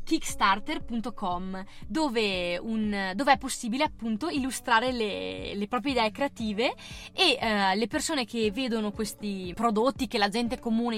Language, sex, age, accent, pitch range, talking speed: Italian, female, 20-39, native, 205-255 Hz, 135 wpm